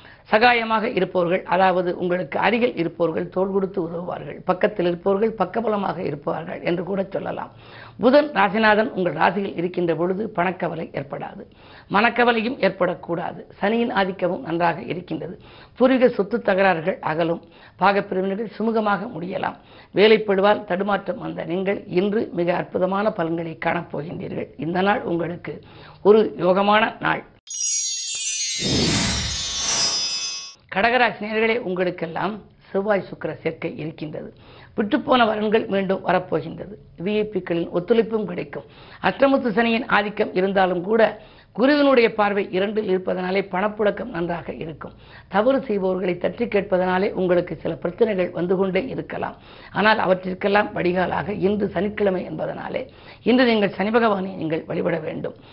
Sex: female